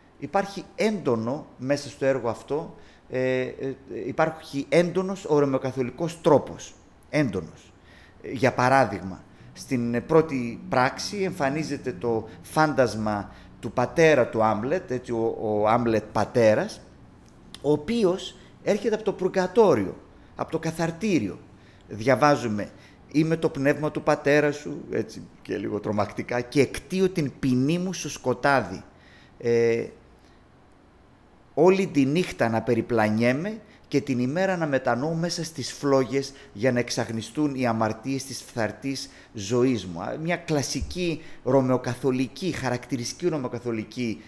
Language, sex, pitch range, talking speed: Greek, male, 110-150 Hz, 110 wpm